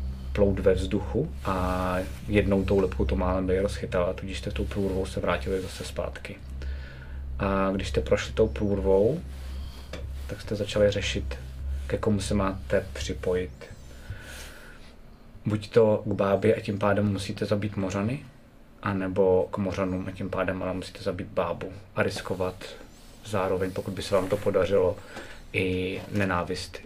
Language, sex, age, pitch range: Czech, male, 30-49, 90-105 Hz